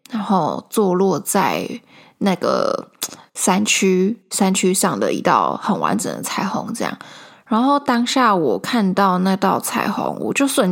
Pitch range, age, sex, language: 195-250 Hz, 10-29, female, Chinese